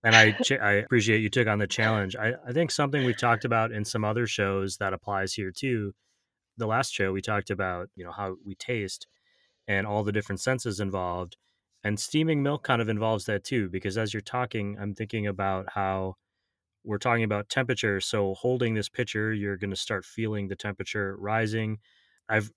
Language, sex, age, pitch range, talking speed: English, male, 20-39, 95-110 Hz, 195 wpm